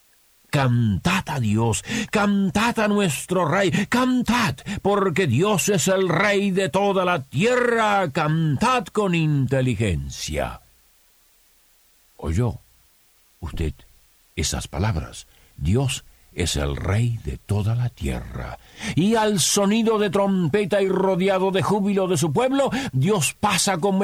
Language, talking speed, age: Spanish, 120 wpm, 50-69